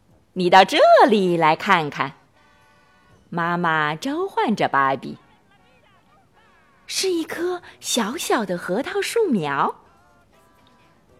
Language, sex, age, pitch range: Chinese, female, 30-49, 180-295 Hz